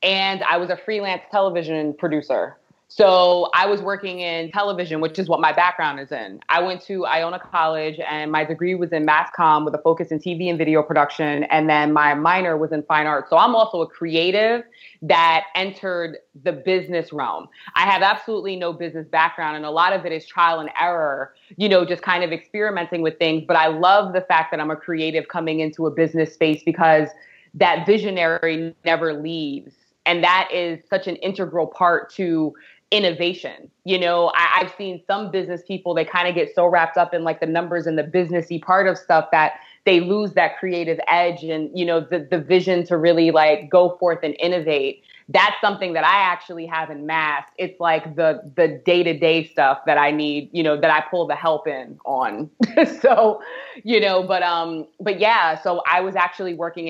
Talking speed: 205 wpm